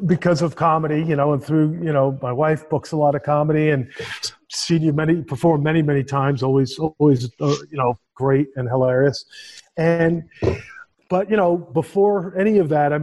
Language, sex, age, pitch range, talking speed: English, male, 40-59, 140-165 Hz, 190 wpm